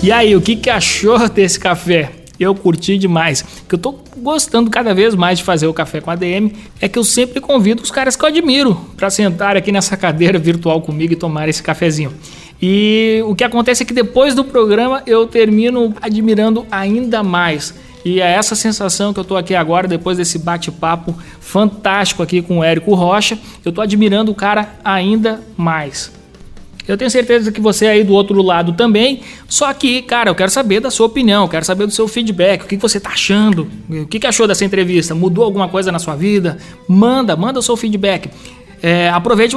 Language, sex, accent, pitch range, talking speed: Portuguese, male, Brazilian, 175-225 Hz, 200 wpm